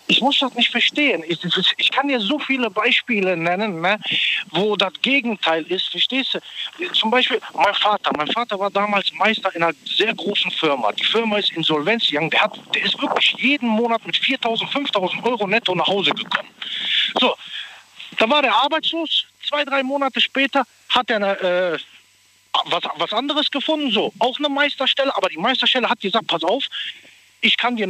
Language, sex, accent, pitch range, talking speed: German, male, German, 190-260 Hz, 185 wpm